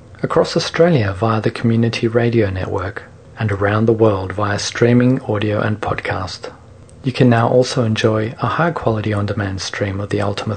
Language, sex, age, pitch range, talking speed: English, male, 40-59, 105-120 Hz, 160 wpm